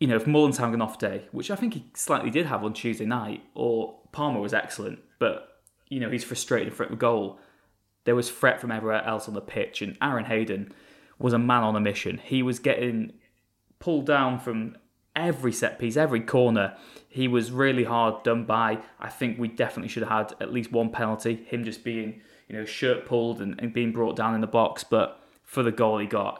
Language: English